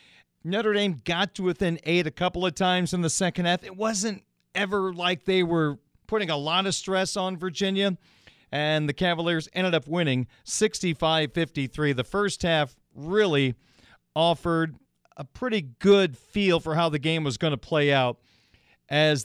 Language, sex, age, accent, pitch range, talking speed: English, male, 40-59, American, 145-185 Hz, 165 wpm